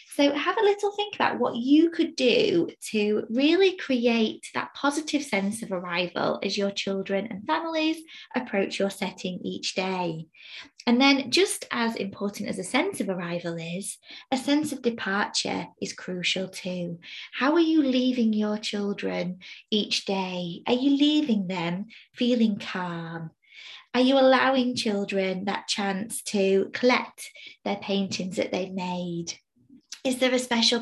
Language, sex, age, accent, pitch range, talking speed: English, female, 20-39, British, 200-275 Hz, 150 wpm